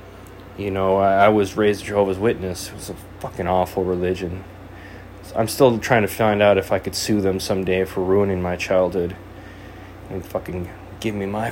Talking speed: 175 wpm